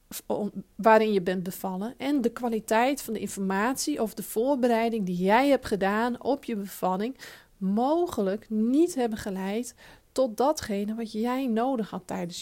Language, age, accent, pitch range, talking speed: Dutch, 40-59, Dutch, 215-270 Hz, 150 wpm